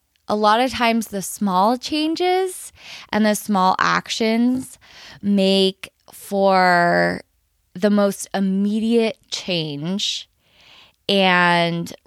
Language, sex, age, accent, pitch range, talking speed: English, female, 20-39, American, 185-250 Hz, 90 wpm